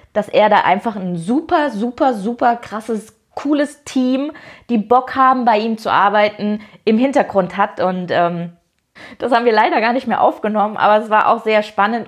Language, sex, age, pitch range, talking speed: German, female, 20-39, 185-235 Hz, 185 wpm